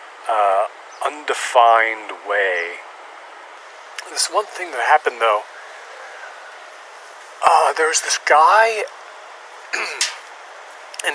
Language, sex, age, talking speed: English, male, 30-49, 80 wpm